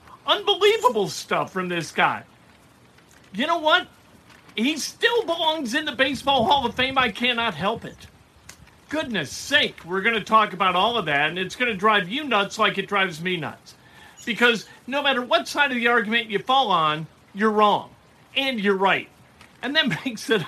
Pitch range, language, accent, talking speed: 195-255 Hz, English, American, 185 wpm